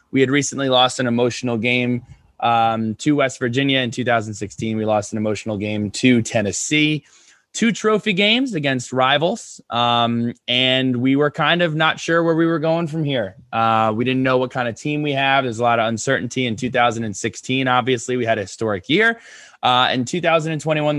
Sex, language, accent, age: male, English, American, 20-39